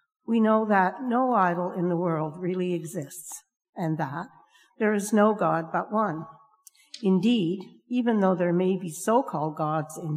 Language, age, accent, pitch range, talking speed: English, 60-79, American, 165-220 Hz, 160 wpm